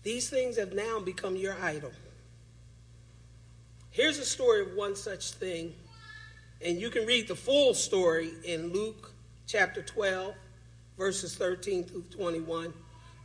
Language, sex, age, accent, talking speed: English, male, 40-59, American, 130 wpm